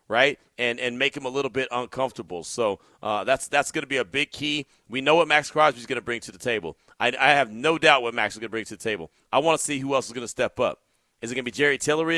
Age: 40-59